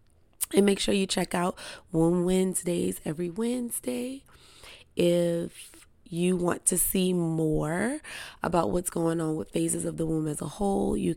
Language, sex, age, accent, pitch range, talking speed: English, female, 20-39, American, 150-190 Hz, 155 wpm